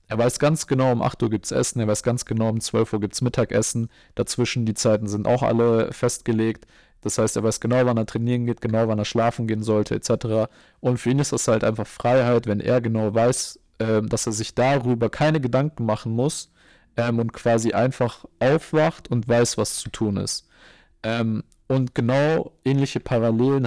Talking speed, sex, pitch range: 195 wpm, male, 110-130 Hz